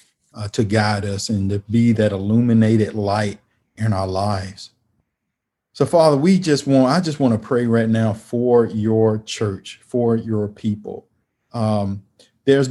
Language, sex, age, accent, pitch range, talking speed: English, male, 40-59, American, 105-120 Hz, 150 wpm